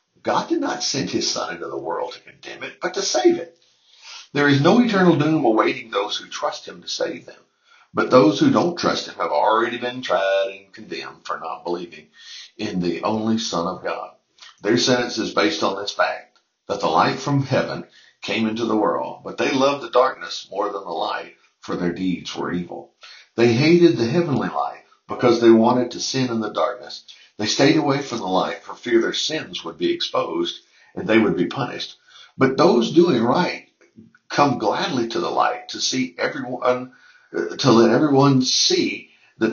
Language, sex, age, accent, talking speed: English, male, 60-79, American, 195 wpm